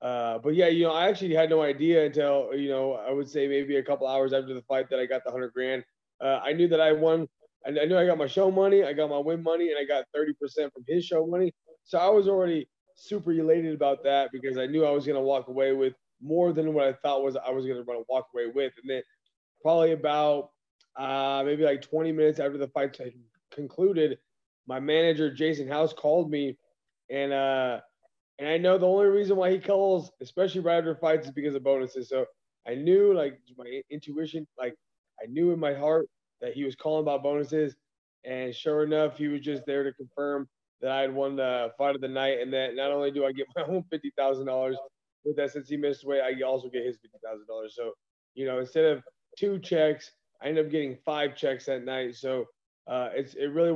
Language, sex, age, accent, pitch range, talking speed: English, male, 20-39, American, 135-160 Hz, 230 wpm